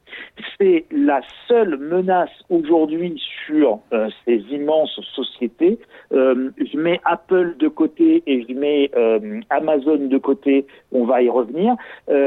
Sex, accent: male, French